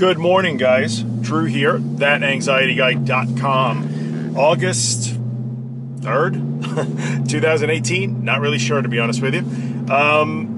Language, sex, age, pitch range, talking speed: English, male, 40-59, 120-160 Hz, 100 wpm